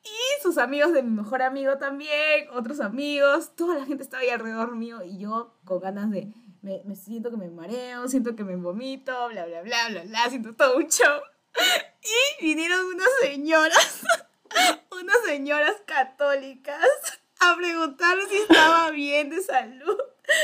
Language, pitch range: Spanish, 210-295 Hz